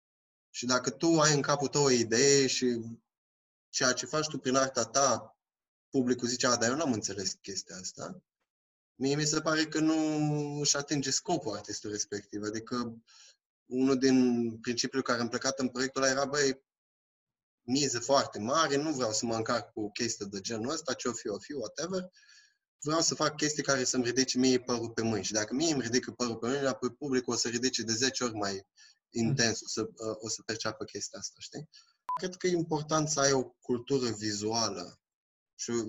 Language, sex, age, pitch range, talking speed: Romanian, male, 20-39, 115-140 Hz, 190 wpm